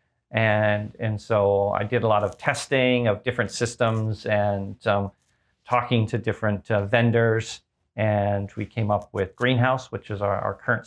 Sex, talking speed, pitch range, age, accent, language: male, 165 wpm, 105-125 Hz, 40-59, American, English